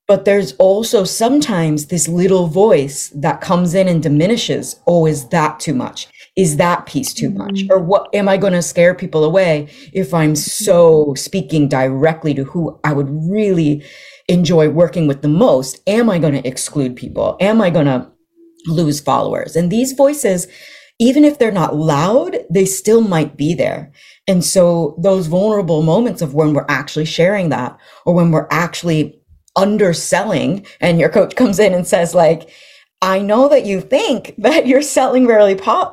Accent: American